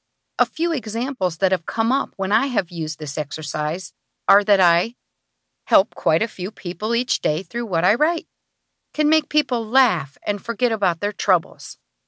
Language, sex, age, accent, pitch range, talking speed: English, female, 50-69, American, 180-265 Hz, 180 wpm